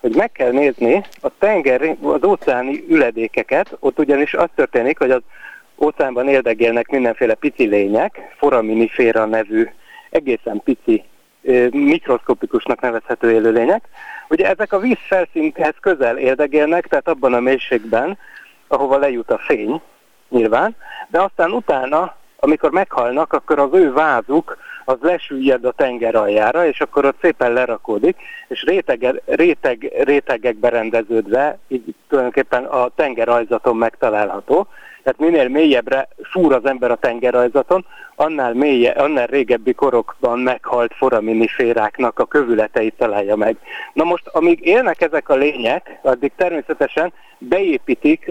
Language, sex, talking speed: Hungarian, male, 125 wpm